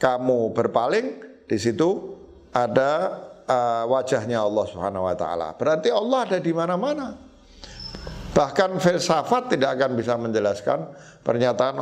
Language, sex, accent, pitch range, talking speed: English, male, Indonesian, 120-155 Hz, 115 wpm